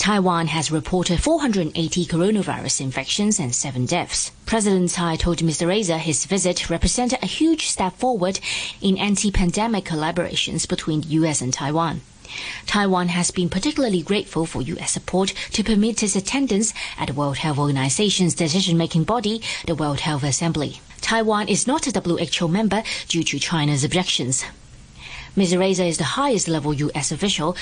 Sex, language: female, English